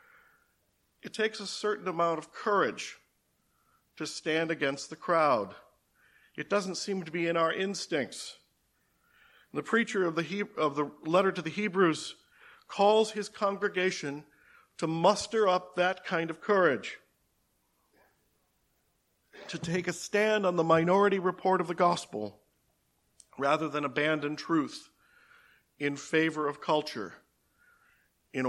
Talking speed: 125 wpm